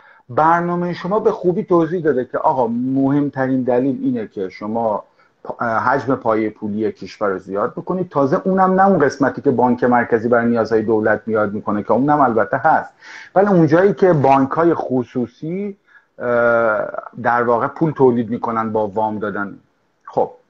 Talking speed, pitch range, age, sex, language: 150 wpm, 120-175 Hz, 50-69, male, Persian